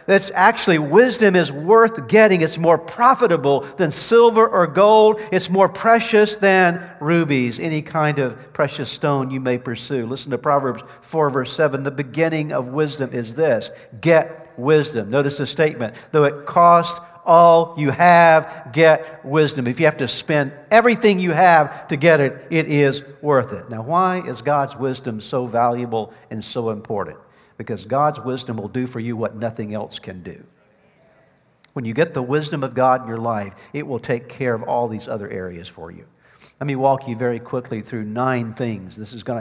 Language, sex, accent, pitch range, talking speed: English, male, American, 125-160 Hz, 185 wpm